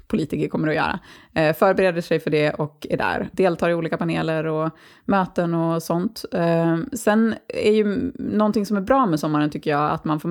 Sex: female